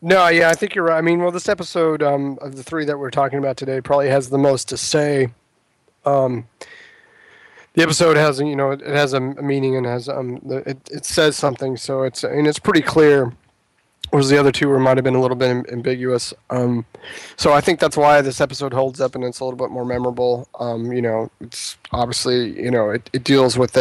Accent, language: American, English